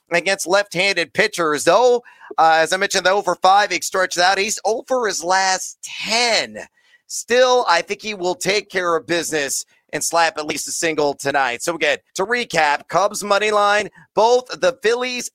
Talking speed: 180 wpm